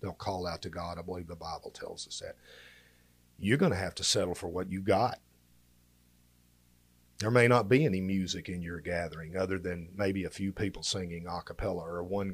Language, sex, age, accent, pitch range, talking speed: English, male, 40-59, American, 85-120 Hz, 205 wpm